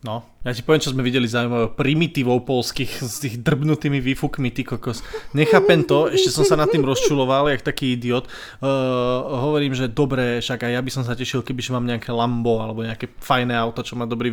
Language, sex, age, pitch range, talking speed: Slovak, male, 20-39, 125-145 Hz, 210 wpm